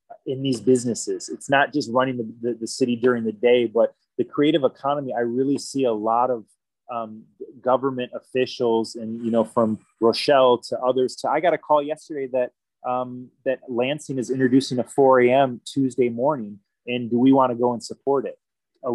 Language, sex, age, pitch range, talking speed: English, male, 20-39, 115-135 Hz, 190 wpm